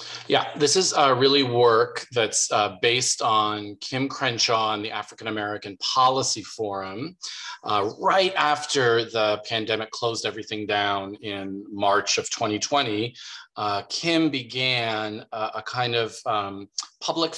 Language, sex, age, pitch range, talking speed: English, male, 40-59, 110-140 Hz, 135 wpm